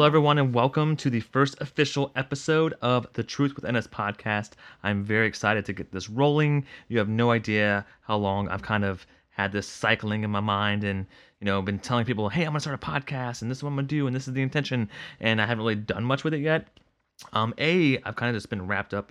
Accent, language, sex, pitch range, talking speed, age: American, English, male, 105-130 Hz, 255 wpm, 20-39